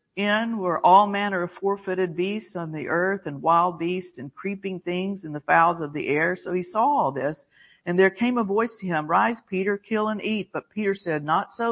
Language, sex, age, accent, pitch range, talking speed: English, female, 50-69, American, 155-195 Hz, 225 wpm